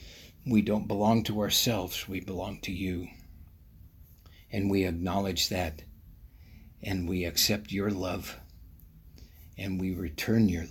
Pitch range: 80-105 Hz